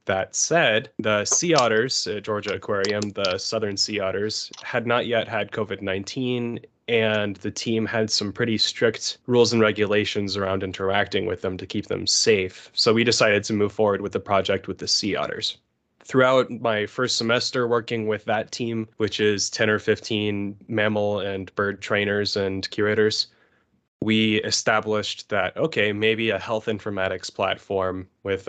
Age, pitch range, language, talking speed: 20-39, 100-110 Hz, English, 160 wpm